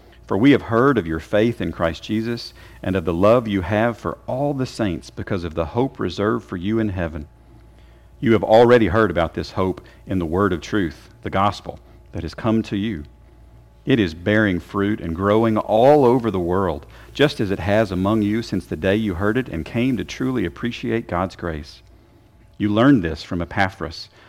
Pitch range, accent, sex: 85-115 Hz, American, male